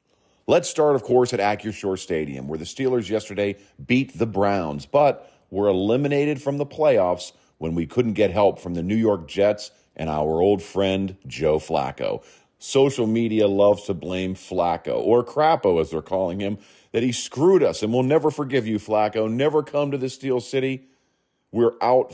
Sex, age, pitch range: male, 40-59, 90-120 Hz